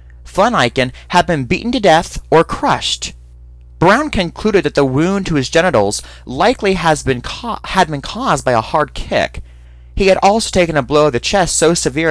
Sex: male